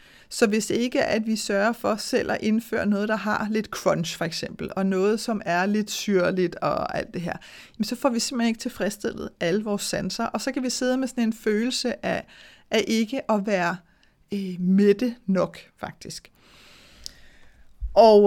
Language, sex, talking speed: Danish, female, 185 wpm